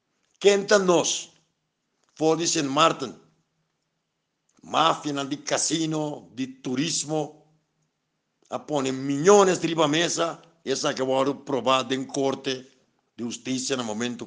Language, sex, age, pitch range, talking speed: Dutch, male, 60-79, 125-155 Hz, 95 wpm